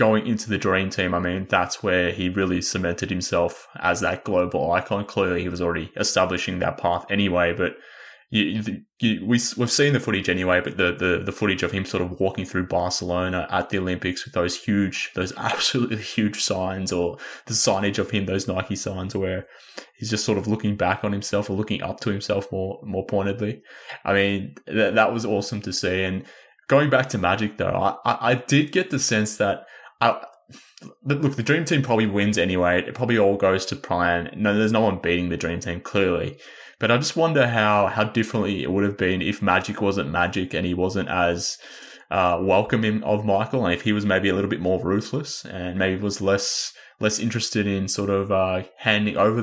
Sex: male